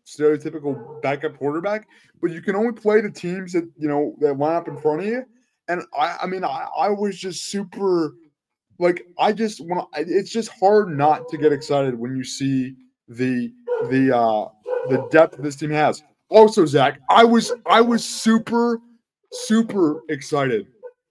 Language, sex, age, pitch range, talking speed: English, male, 20-39, 145-200 Hz, 170 wpm